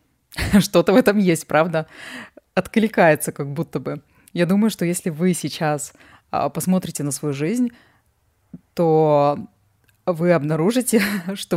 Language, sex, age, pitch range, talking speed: Russian, female, 20-39, 150-190 Hz, 120 wpm